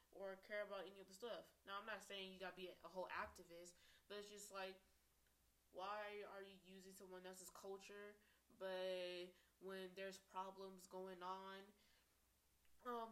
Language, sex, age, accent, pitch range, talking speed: English, female, 20-39, American, 185-220 Hz, 165 wpm